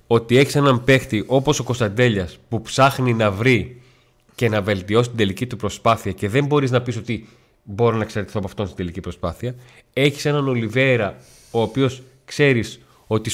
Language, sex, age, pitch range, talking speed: Greek, male, 30-49, 105-130 Hz, 175 wpm